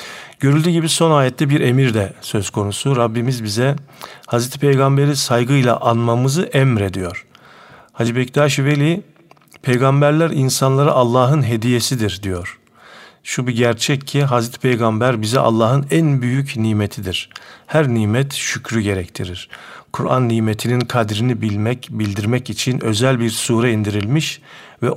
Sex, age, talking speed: male, 50-69, 120 wpm